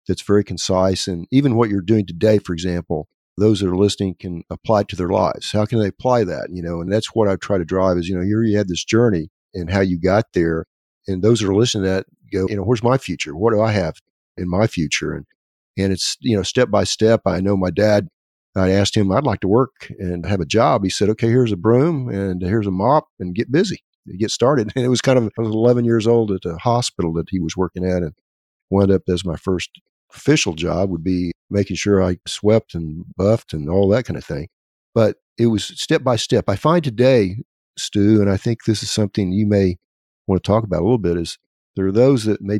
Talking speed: 250 wpm